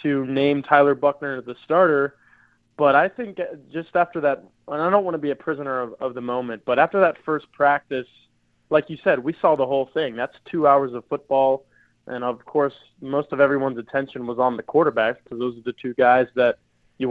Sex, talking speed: male, 215 wpm